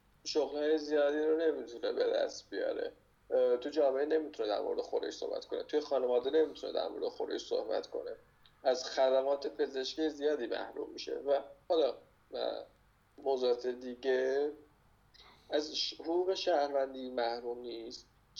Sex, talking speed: male, 125 wpm